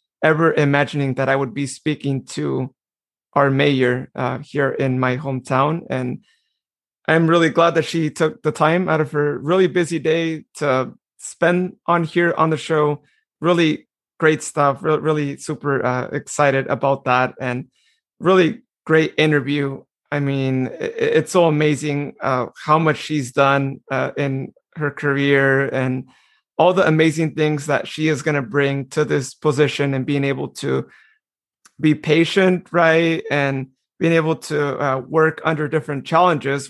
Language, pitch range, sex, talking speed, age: English, 140-165 Hz, male, 155 wpm, 30-49